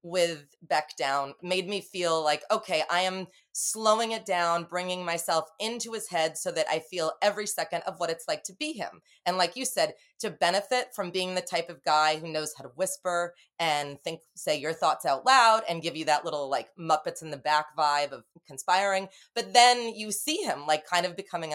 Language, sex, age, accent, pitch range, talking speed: English, female, 30-49, American, 170-210 Hz, 215 wpm